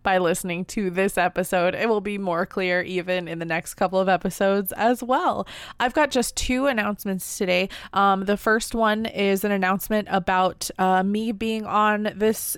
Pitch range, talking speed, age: 190-225 Hz, 180 wpm, 20-39